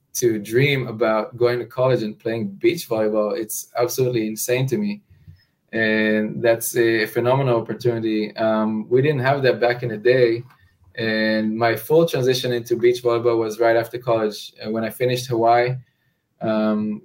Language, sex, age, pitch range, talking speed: English, male, 20-39, 110-125 Hz, 160 wpm